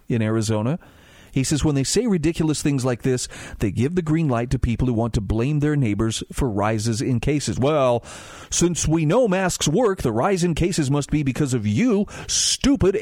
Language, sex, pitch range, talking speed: English, male, 115-155 Hz, 205 wpm